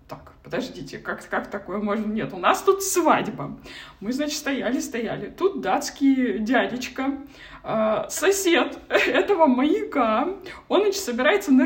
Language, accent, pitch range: Russian, native, 245-325 Hz